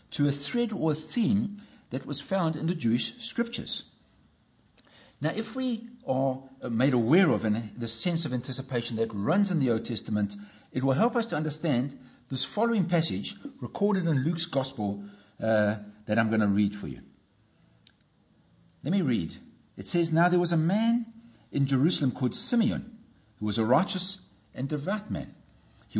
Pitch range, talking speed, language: 110-170 Hz, 170 wpm, English